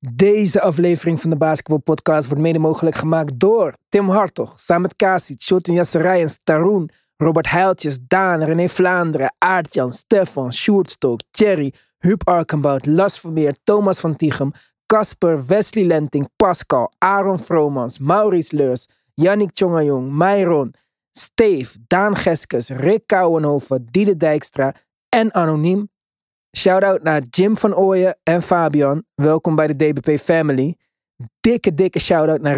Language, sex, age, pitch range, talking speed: Dutch, male, 20-39, 145-185 Hz, 130 wpm